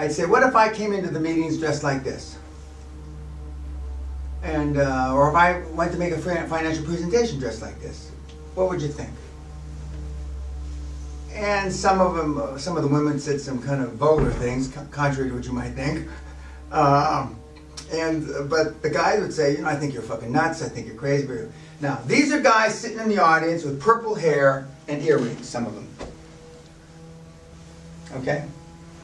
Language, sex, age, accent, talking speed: English, male, 40-59, American, 185 wpm